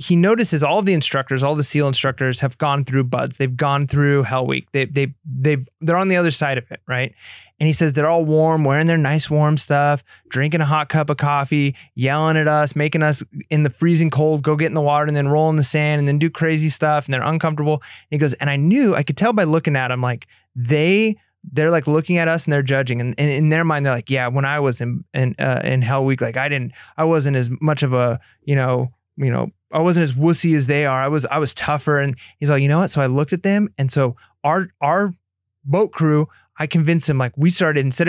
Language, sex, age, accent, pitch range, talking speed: English, male, 20-39, American, 135-165 Hz, 255 wpm